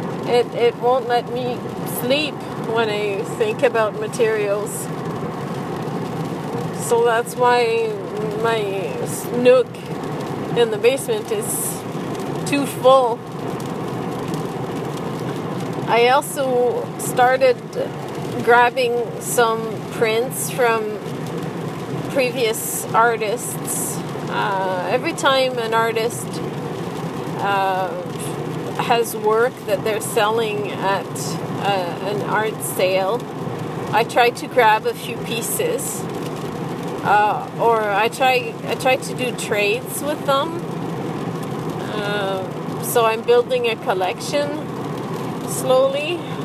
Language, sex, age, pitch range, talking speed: English, female, 30-49, 180-240 Hz, 95 wpm